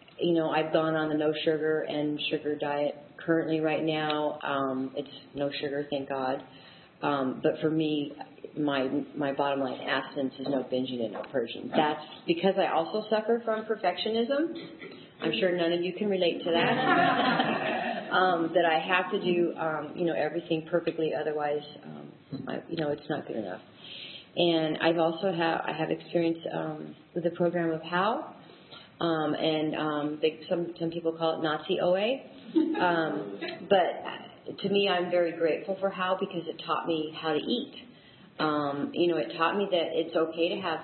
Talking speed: 180 wpm